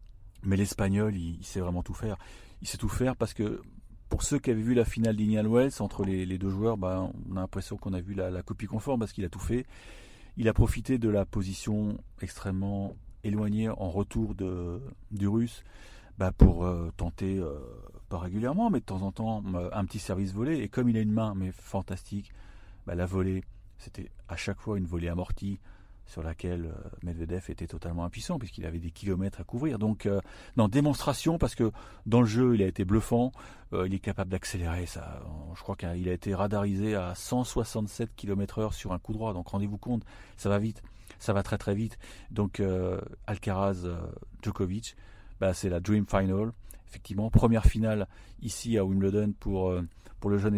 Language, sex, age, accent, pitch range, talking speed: French, male, 40-59, French, 95-110 Hz, 195 wpm